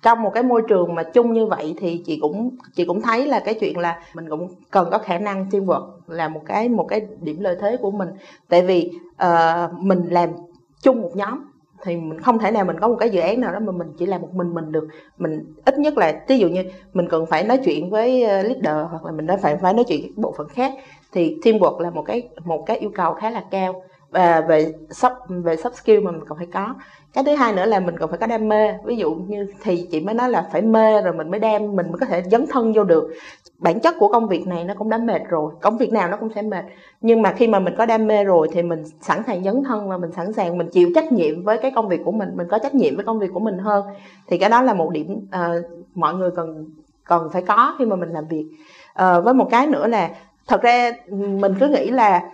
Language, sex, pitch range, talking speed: Vietnamese, female, 170-230 Hz, 265 wpm